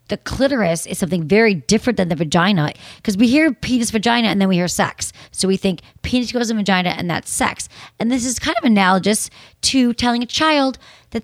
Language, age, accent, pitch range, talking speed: English, 40-59, American, 185-245 Hz, 215 wpm